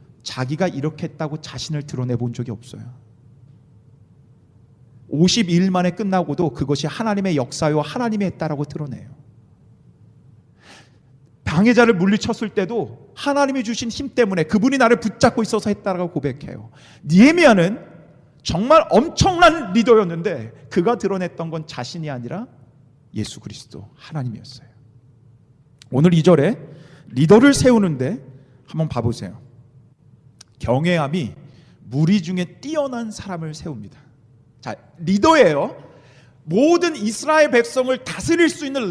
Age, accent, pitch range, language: 40-59, native, 125-215 Hz, Korean